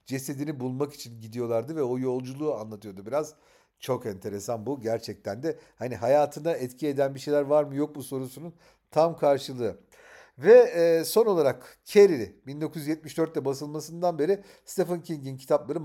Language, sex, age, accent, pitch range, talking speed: Turkish, male, 50-69, native, 125-165 Hz, 140 wpm